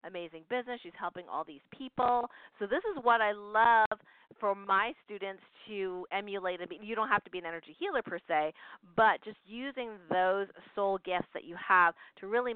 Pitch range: 180-225 Hz